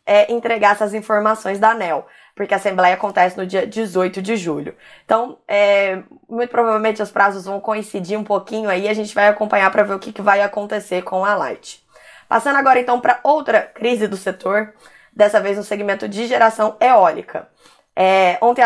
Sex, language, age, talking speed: female, Portuguese, 20-39, 175 wpm